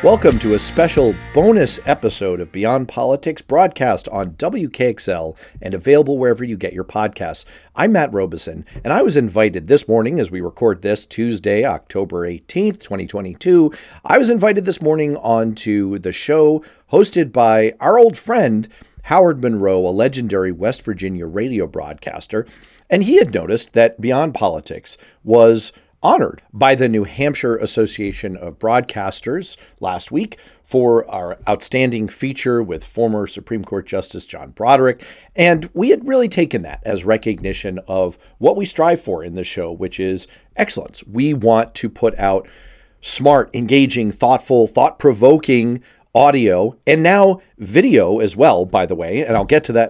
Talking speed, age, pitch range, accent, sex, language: 155 wpm, 40-59, 105-145 Hz, American, male, English